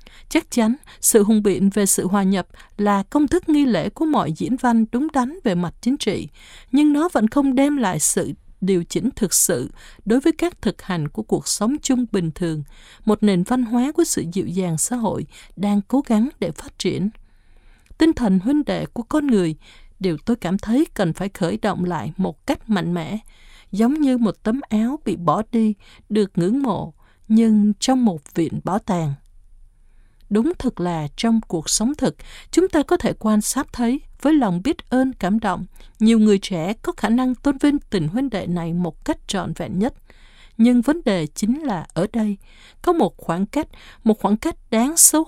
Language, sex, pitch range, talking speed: Vietnamese, female, 185-255 Hz, 200 wpm